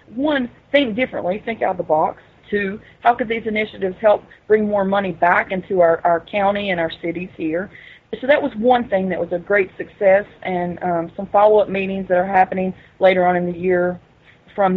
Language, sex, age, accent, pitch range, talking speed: English, female, 30-49, American, 185-230 Hz, 205 wpm